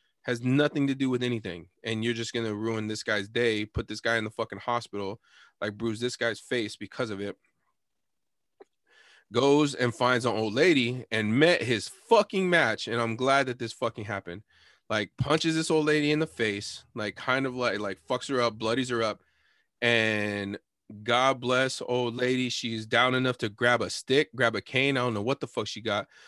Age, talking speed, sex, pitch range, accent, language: 20-39, 205 wpm, male, 110-135 Hz, American, English